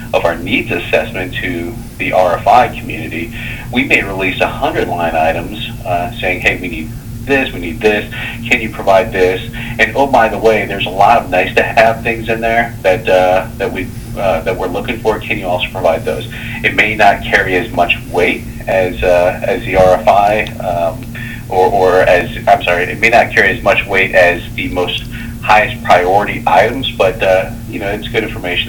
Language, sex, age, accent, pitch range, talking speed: English, male, 40-59, American, 95-120 Hz, 195 wpm